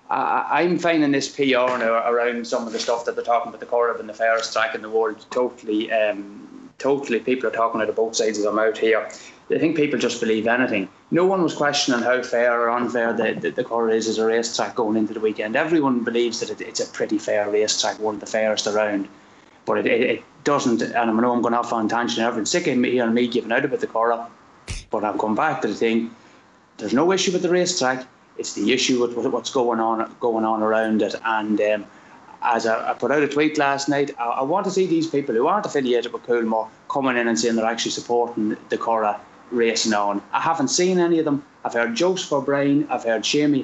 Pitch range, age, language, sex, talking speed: 115-140 Hz, 20-39, English, male, 235 wpm